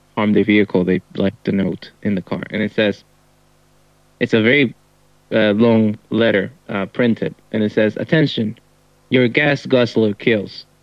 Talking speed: 160 wpm